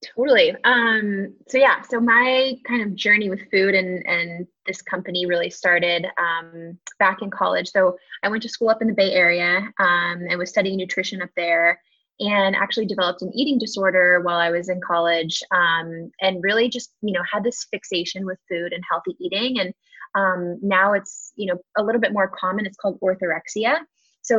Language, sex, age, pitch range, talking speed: English, female, 20-39, 180-220 Hz, 190 wpm